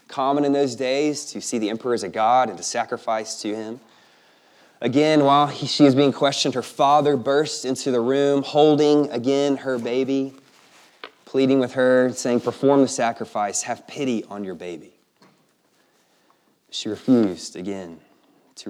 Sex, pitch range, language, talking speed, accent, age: male, 105-130 Hz, English, 155 wpm, American, 20-39